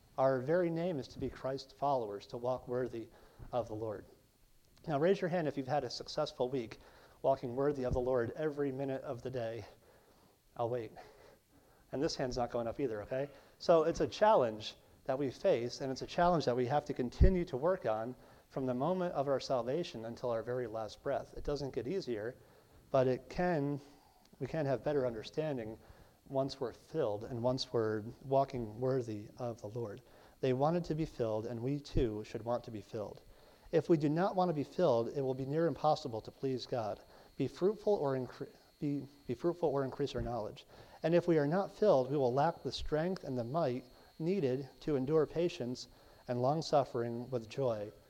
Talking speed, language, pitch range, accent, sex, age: 200 wpm, English, 120-150 Hz, American, male, 40-59